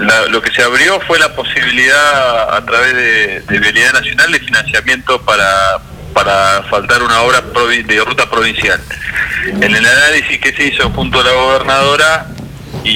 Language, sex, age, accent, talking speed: Spanish, male, 30-49, Argentinian, 165 wpm